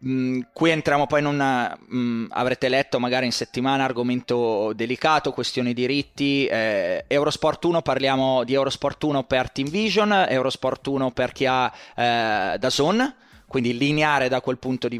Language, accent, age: Italian, native, 20-39